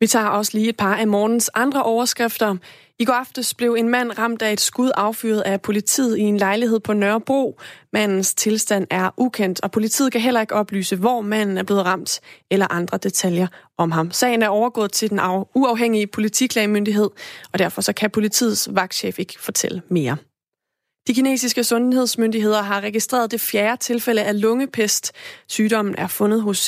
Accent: native